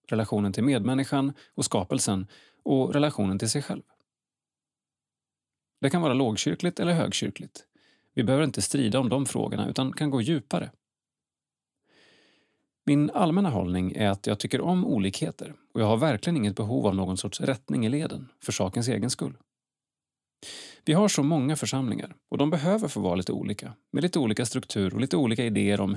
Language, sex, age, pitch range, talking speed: Swedish, male, 30-49, 105-145 Hz, 170 wpm